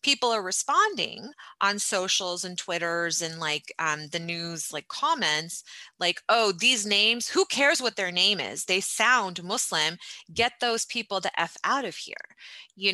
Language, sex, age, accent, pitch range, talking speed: English, female, 30-49, American, 175-220 Hz, 165 wpm